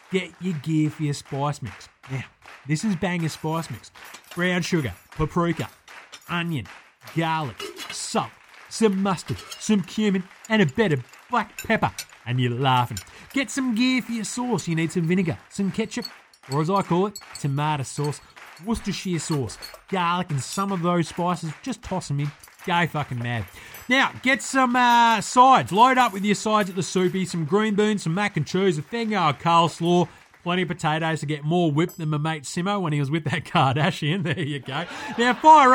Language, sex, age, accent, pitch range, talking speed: English, male, 30-49, Australian, 150-200 Hz, 190 wpm